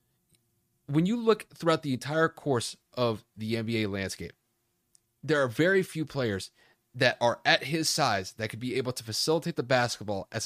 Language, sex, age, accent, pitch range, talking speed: English, male, 30-49, American, 105-140 Hz, 170 wpm